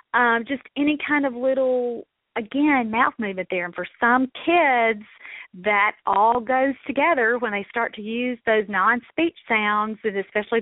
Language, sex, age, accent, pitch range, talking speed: English, female, 40-59, American, 215-275 Hz, 160 wpm